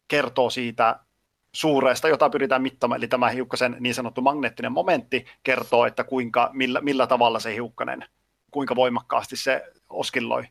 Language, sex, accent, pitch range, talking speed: Finnish, male, native, 120-140 Hz, 135 wpm